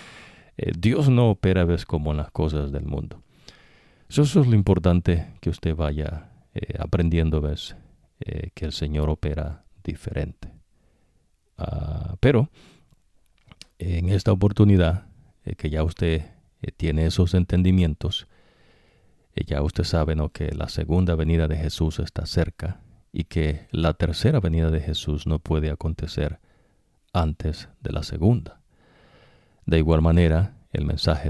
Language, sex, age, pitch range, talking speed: English, male, 50-69, 80-95 Hz, 135 wpm